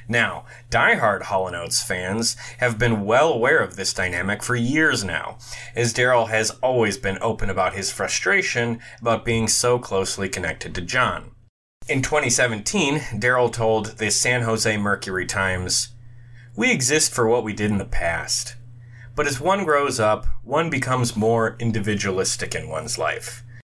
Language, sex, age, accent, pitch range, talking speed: English, male, 30-49, American, 110-125 Hz, 150 wpm